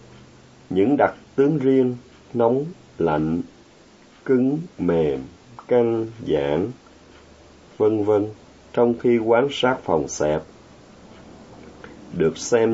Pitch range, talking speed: 85-120 Hz, 95 wpm